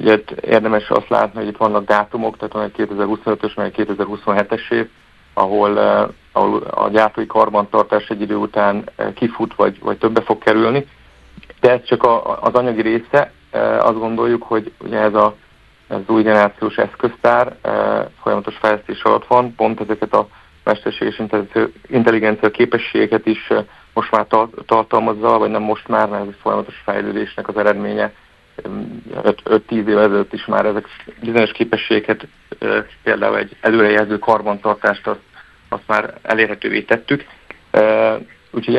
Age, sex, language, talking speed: 50-69, male, Hungarian, 135 wpm